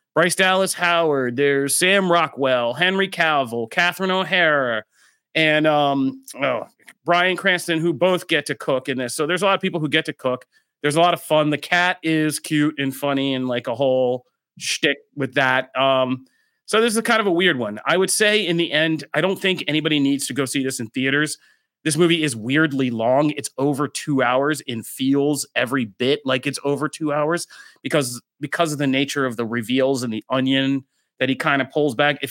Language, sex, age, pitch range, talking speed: English, male, 30-49, 130-165 Hz, 205 wpm